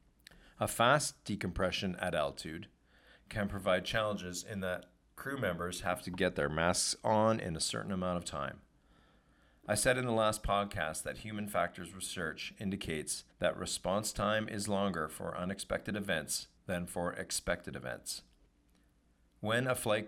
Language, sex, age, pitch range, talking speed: English, male, 40-59, 85-105 Hz, 150 wpm